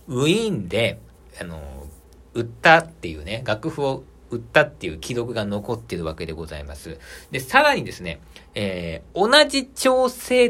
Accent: native